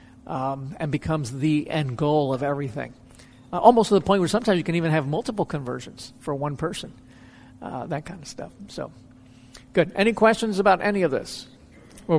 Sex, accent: male, American